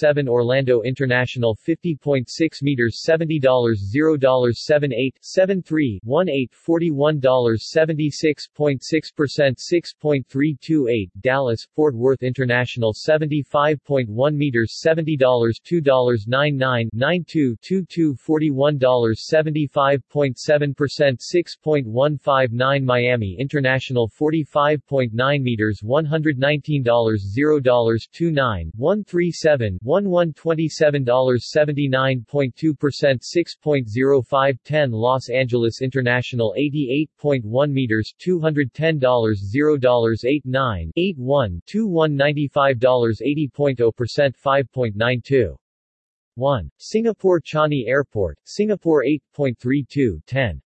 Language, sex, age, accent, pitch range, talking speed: English, male, 40-59, American, 125-150 Hz, 125 wpm